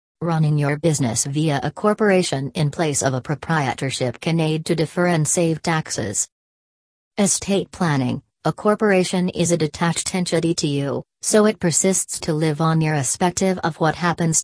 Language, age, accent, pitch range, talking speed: English, 40-59, American, 150-180 Hz, 160 wpm